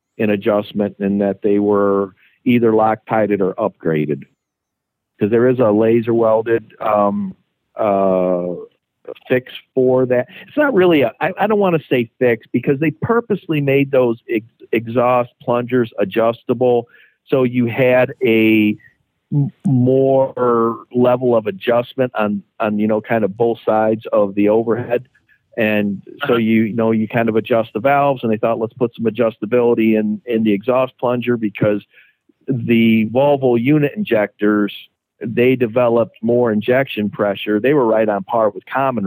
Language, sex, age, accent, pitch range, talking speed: English, male, 50-69, American, 105-125 Hz, 150 wpm